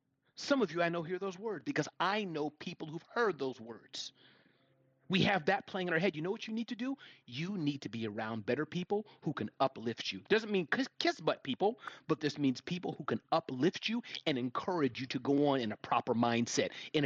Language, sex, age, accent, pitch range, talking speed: English, male, 30-49, American, 130-195 Hz, 230 wpm